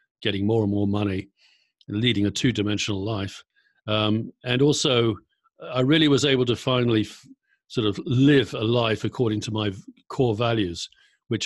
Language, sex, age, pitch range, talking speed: English, male, 50-69, 100-125 Hz, 160 wpm